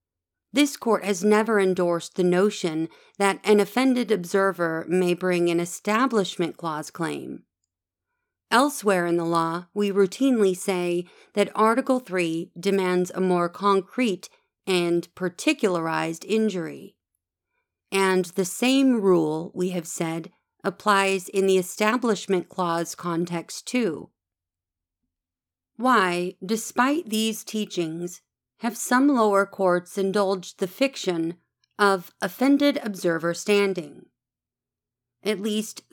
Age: 40-59